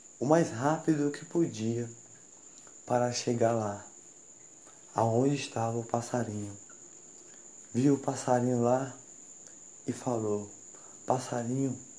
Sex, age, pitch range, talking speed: male, 20-39, 120-145 Hz, 95 wpm